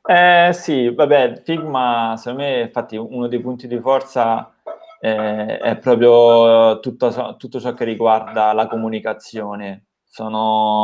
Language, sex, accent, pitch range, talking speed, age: Italian, male, native, 110-125 Hz, 125 wpm, 20-39